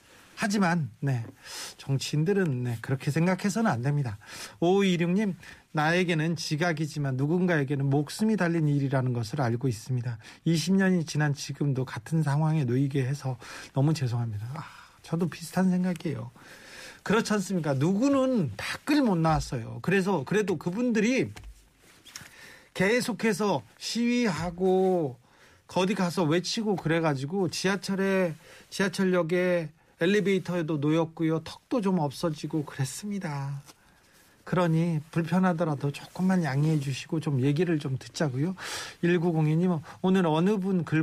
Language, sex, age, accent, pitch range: Korean, male, 40-59, native, 140-185 Hz